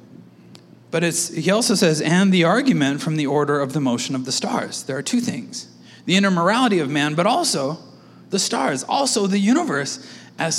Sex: male